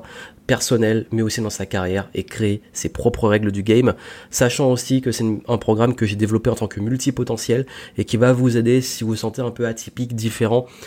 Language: French